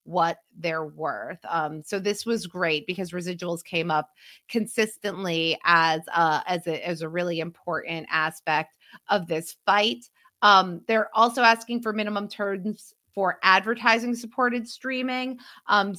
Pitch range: 165-210 Hz